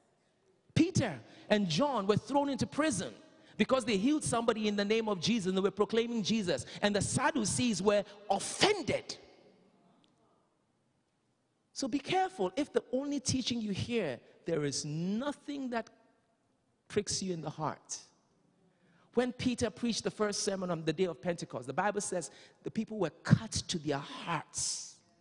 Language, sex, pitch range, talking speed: English, male, 160-230 Hz, 155 wpm